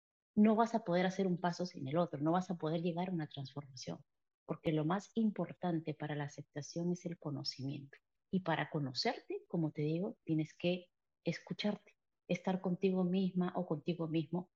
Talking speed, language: 175 wpm, Spanish